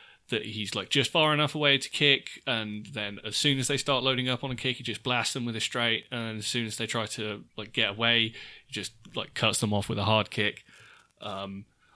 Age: 20-39